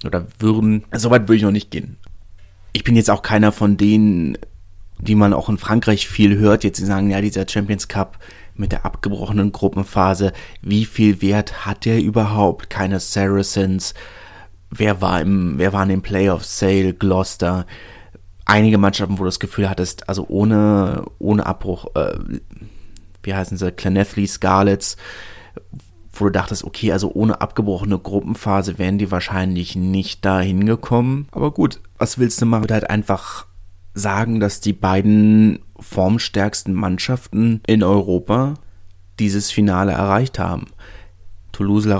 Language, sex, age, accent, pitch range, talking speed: German, male, 30-49, German, 95-105 Hz, 150 wpm